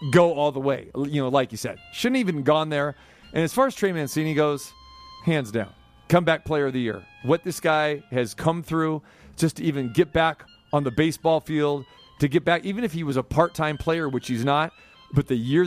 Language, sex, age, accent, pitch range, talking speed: English, male, 40-59, American, 140-195 Hz, 220 wpm